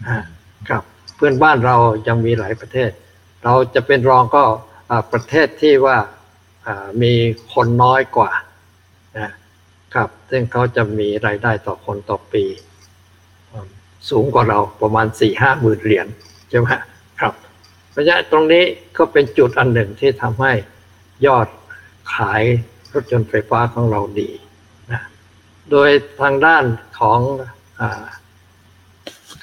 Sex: male